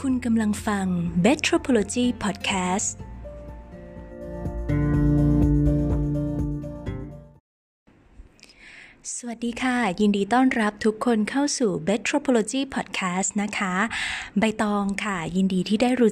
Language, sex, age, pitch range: Thai, female, 20-39, 185-230 Hz